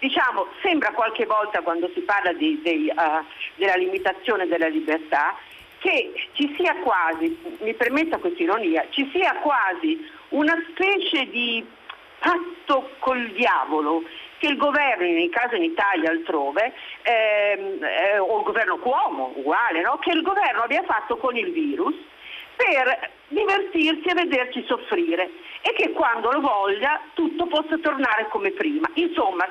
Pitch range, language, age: 235-335 Hz, Italian, 50-69